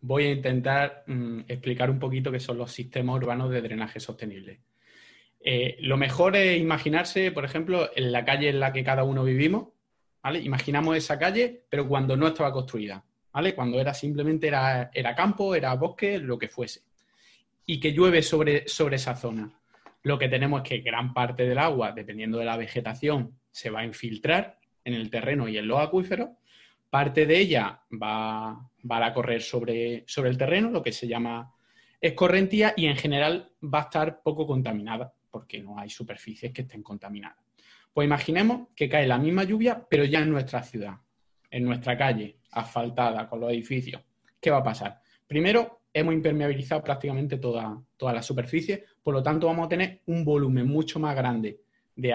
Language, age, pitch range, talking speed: Spanish, 20-39, 120-155 Hz, 180 wpm